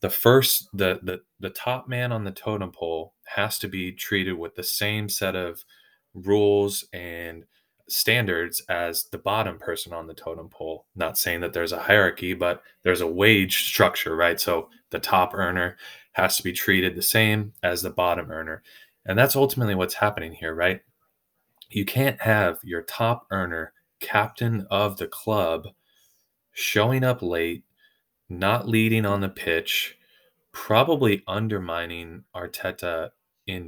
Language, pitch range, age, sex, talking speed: English, 90-110 Hz, 20-39, male, 155 wpm